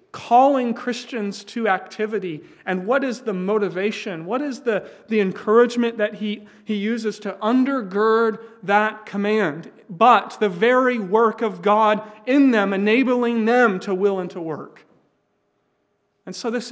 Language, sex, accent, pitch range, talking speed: English, male, American, 185-230 Hz, 145 wpm